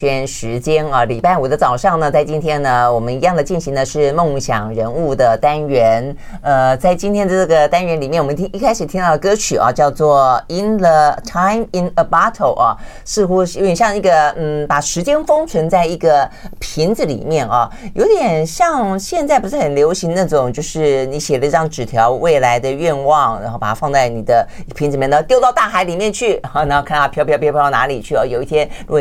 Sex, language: female, Chinese